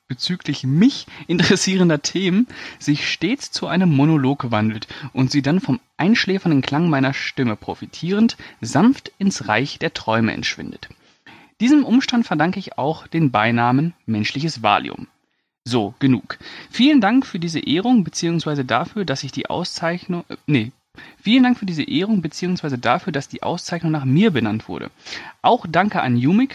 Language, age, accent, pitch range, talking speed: German, 30-49, German, 135-190 Hz, 150 wpm